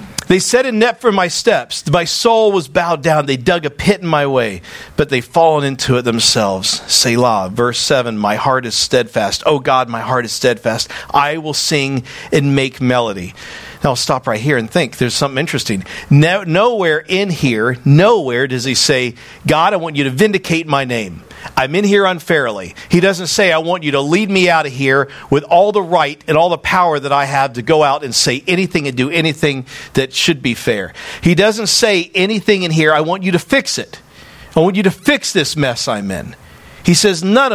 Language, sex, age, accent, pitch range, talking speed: English, male, 50-69, American, 125-180 Hz, 210 wpm